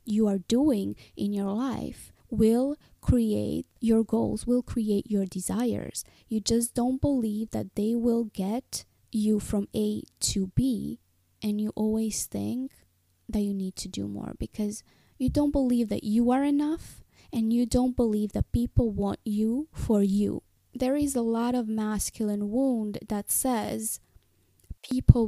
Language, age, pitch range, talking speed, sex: English, 20-39, 195-230 Hz, 155 wpm, female